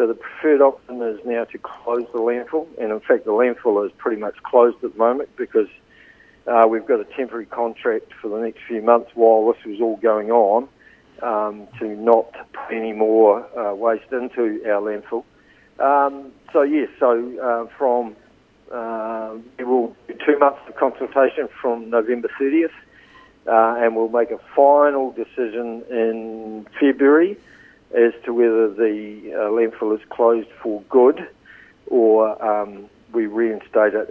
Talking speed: 160 wpm